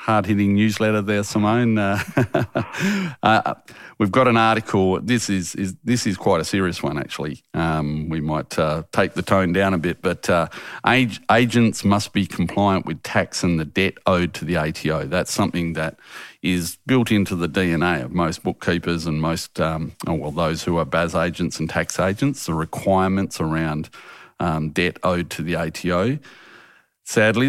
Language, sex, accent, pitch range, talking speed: English, male, Australian, 85-105 Hz, 175 wpm